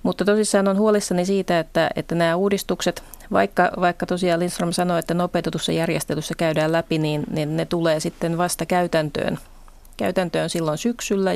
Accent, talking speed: native, 155 wpm